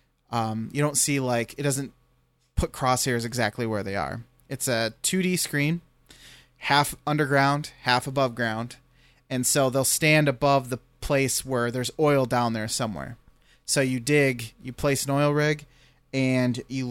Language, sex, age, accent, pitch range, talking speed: English, male, 30-49, American, 115-140 Hz, 160 wpm